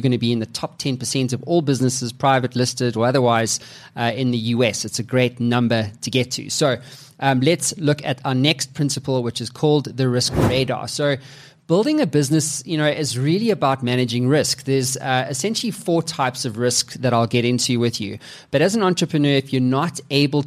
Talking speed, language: 210 wpm, English